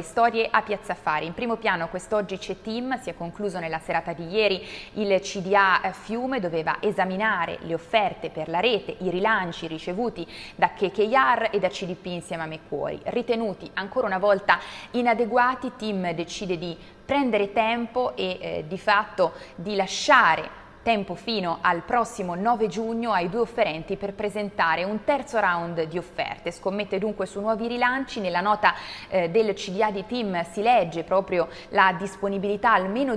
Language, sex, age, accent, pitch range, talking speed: Italian, female, 20-39, native, 175-215 Hz, 155 wpm